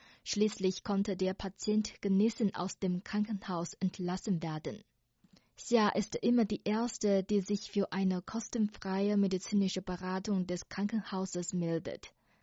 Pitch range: 185-210 Hz